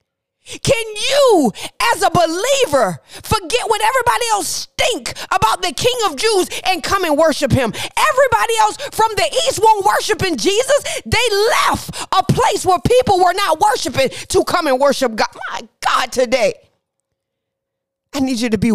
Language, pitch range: English, 260-365 Hz